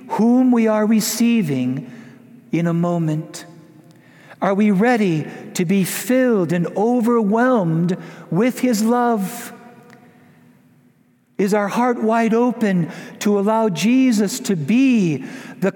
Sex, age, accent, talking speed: male, 60-79, American, 110 wpm